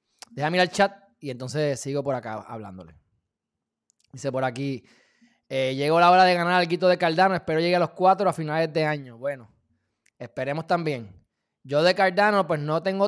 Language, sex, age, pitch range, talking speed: Spanish, male, 20-39, 130-170 Hz, 190 wpm